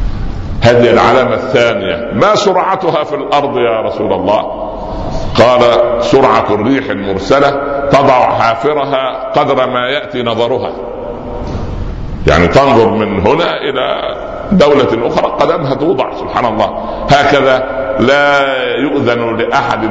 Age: 60-79